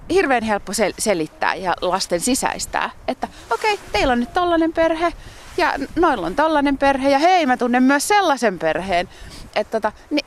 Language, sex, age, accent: Finnish, female, 30-49, native